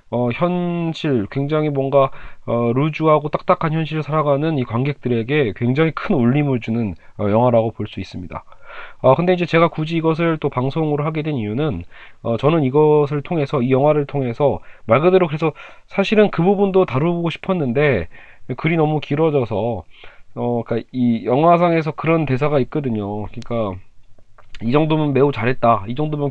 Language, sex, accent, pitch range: Korean, male, native, 115-160 Hz